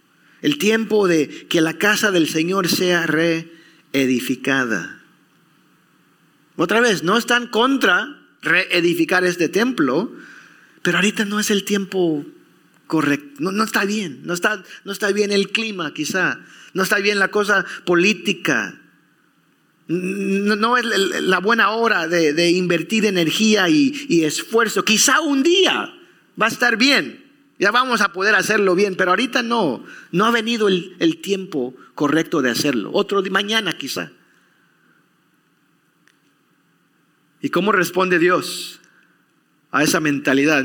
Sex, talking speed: male, 135 wpm